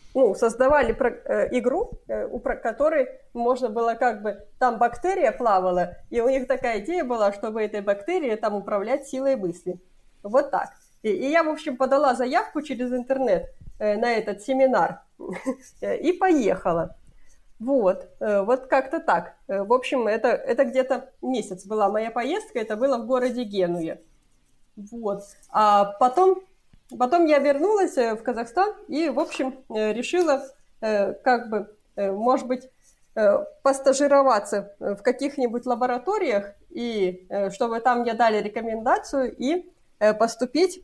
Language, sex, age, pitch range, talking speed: Russian, female, 30-49, 210-275 Hz, 125 wpm